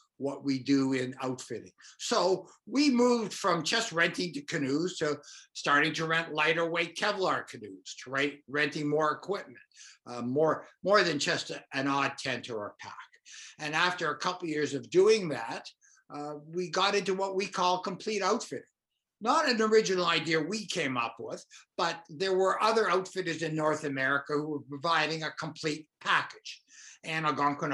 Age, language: 60-79, English